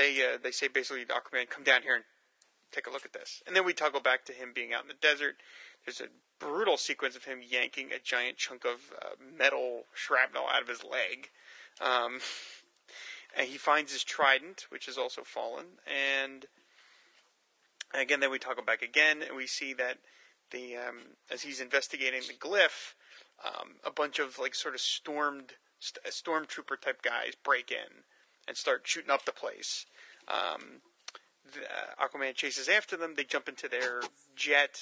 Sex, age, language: male, 30-49, English